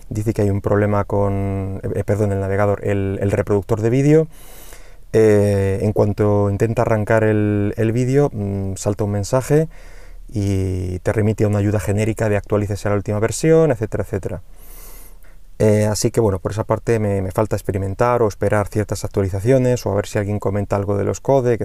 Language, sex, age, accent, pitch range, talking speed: Spanish, male, 30-49, Spanish, 100-125 Hz, 185 wpm